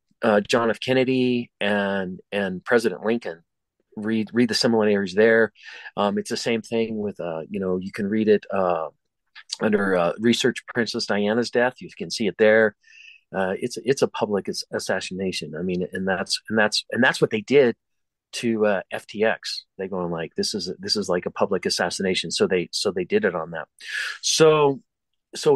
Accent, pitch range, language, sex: American, 105-130 Hz, English, male